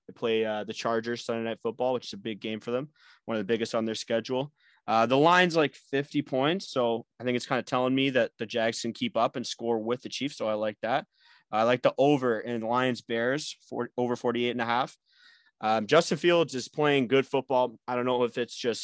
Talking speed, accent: 245 wpm, American